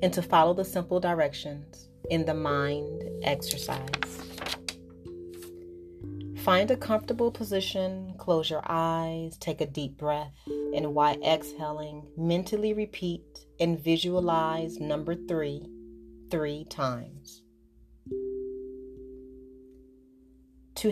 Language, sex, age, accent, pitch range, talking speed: English, female, 30-49, American, 145-170 Hz, 95 wpm